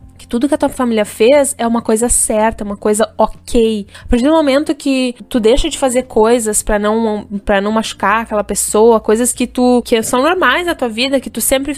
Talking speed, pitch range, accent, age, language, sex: 215 wpm, 210-270 Hz, Brazilian, 10-29, Portuguese, female